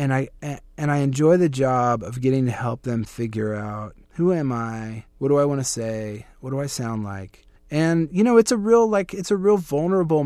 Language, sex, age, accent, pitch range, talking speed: English, male, 30-49, American, 110-135 Hz, 230 wpm